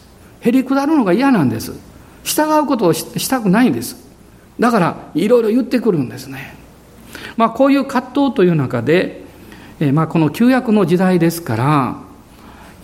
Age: 50-69